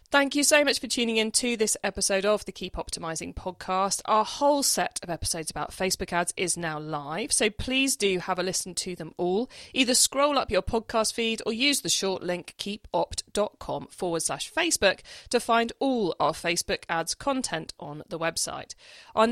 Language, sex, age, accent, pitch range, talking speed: English, female, 40-59, British, 170-230 Hz, 190 wpm